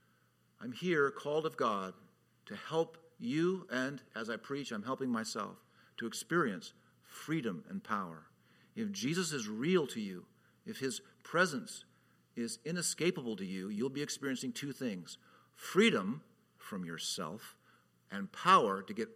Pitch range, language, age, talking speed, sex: 135-215 Hz, English, 50-69, 140 wpm, male